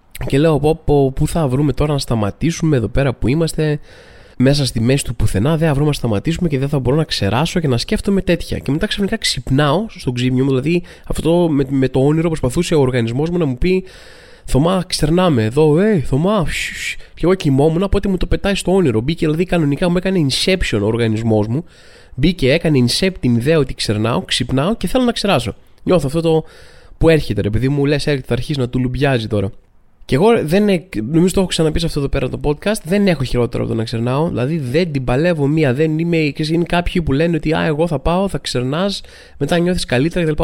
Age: 20-39